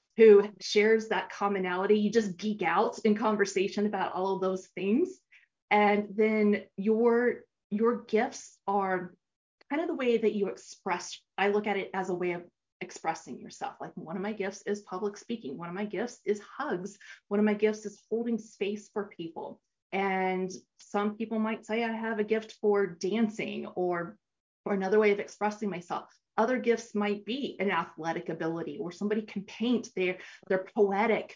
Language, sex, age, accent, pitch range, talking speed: English, female, 30-49, American, 190-225 Hz, 180 wpm